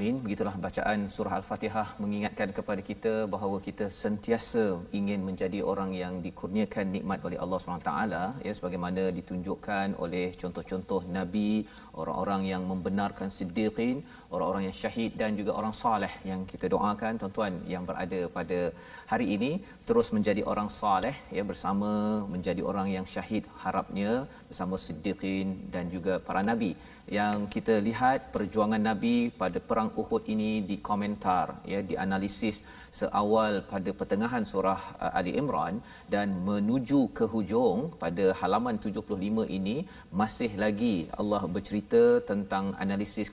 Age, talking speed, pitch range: 40-59, 135 wpm, 95-110 Hz